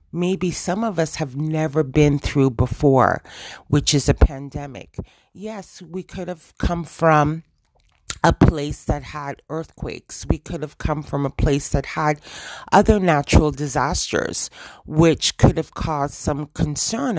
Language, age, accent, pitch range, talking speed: English, 40-59, American, 140-165 Hz, 145 wpm